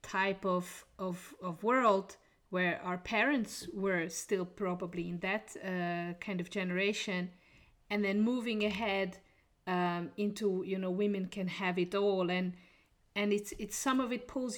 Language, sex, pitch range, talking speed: English, female, 185-220 Hz, 155 wpm